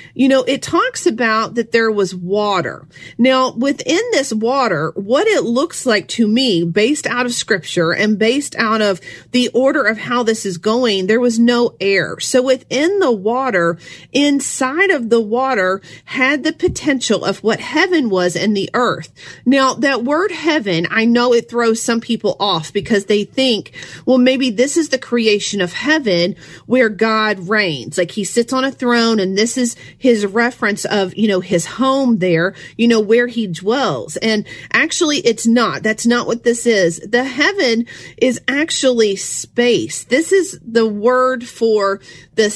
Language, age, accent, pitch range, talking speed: English, 40-59, American, 205-260 Hz, 175 wpm